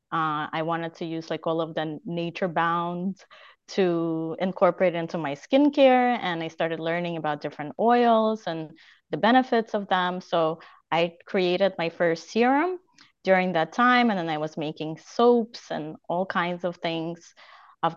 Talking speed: 165 wpm